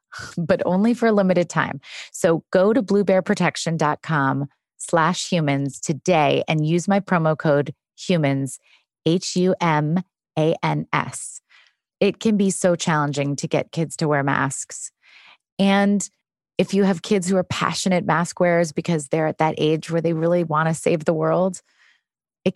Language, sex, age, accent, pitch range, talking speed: English, female, 30-49, American, 150-185 Hz, 145 wpm